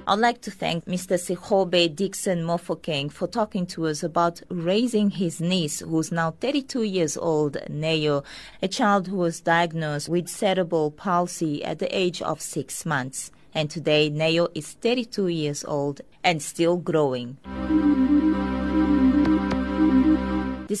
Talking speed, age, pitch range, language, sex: 135 wpm, 30-49, 160-205 Hz, English, female